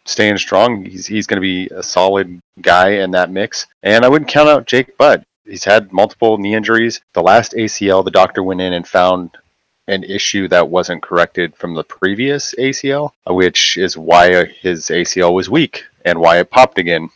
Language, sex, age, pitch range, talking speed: English, male, 30-49, 85-100 Hz, 190 wpm